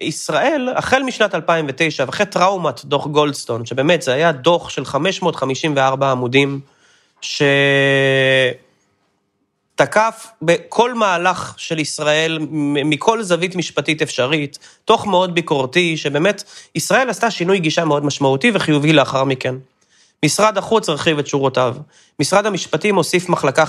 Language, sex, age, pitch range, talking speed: Hebrew, male, 30-49, 140-185 Hz, 115 wpm